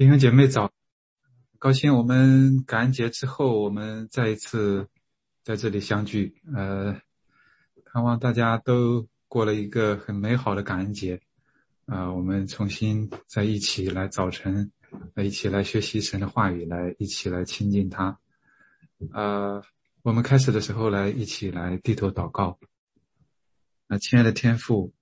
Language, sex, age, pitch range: English, male, 20-39, 100-120 Hz